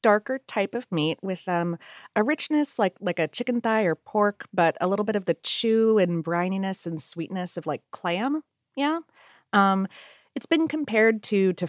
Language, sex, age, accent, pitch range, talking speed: English, female, 30-49, American, 160-205 Hz, 185 wpm